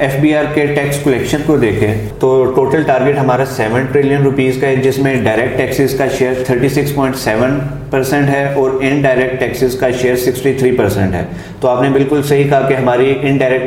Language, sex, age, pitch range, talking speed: Urdu, male, 30-49, 125-135 Hz, 160 wpm